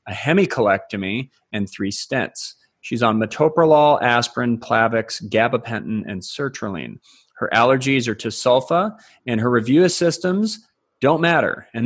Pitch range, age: 110-135 Hz, 30-49